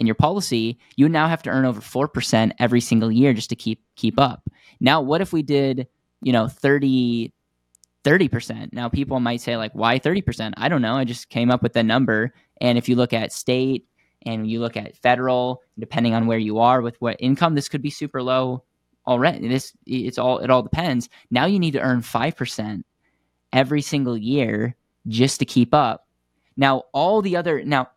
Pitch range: 115-140 Hz